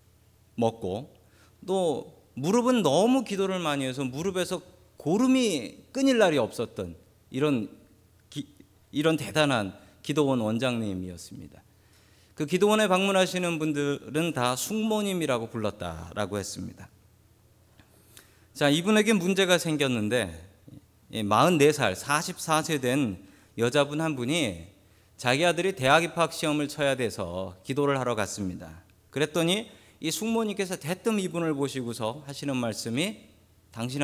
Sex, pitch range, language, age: male, 100-170 Hz, Korean, 40-59